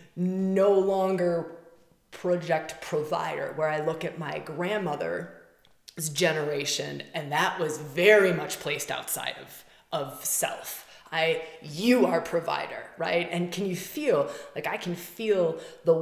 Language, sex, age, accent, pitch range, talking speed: English, female, 20-39, American, 160-200 Hz, 130 wpm